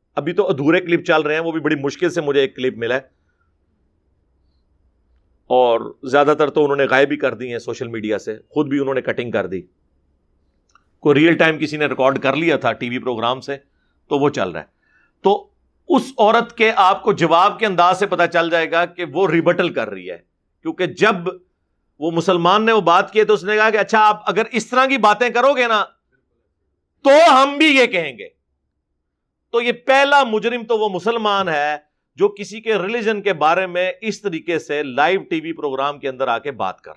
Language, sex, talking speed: Urdu, male, 215 wpm